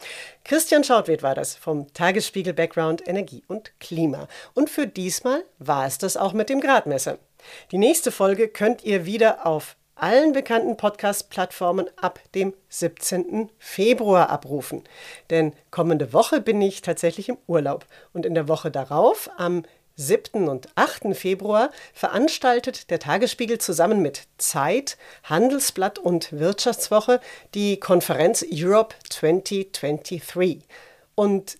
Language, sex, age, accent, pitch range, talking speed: German, female, 40-59, German, 170-225 Hz, 125 wpm